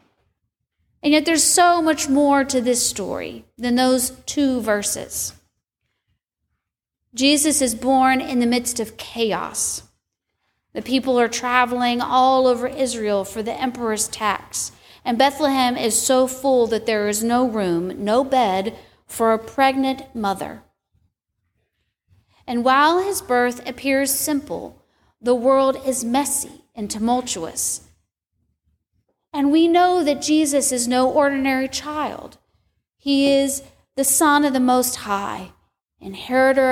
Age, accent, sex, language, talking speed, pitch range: 40-59, American, female, English, 125 wpm, 220-275 Hz